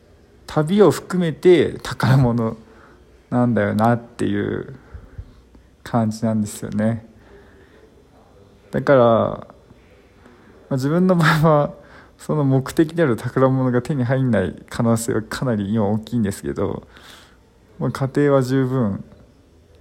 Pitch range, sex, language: 100-130 Hz, male, Japanese